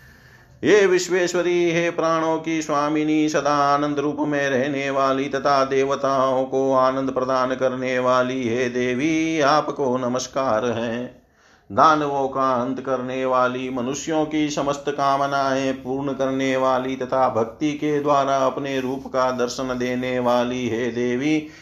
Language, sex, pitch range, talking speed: Hindi, male, 130-150 Hz, 135 wpm